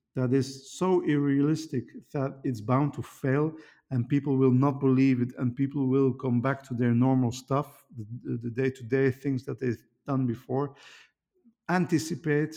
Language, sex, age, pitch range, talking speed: English, male, 50-69, 125-145 Hz, 160 wpm